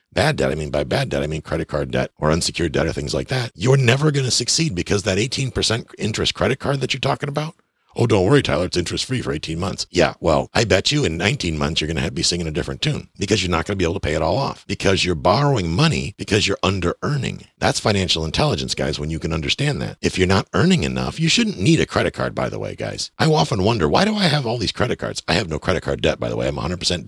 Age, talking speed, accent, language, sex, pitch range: 50-69, 275 wpm, American, English, male, 80-115 Hz